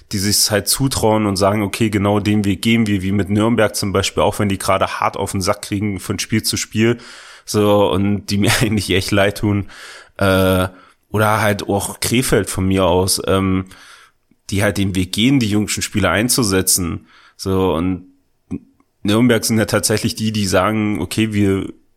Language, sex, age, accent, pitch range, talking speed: German, male, 30-49, German, 95-115 Hz, 185 wpm